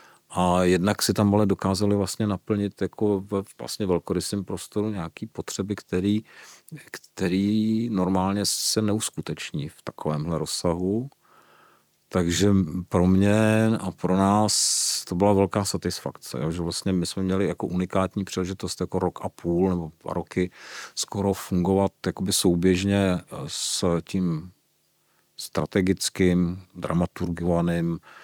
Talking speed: 115 wpm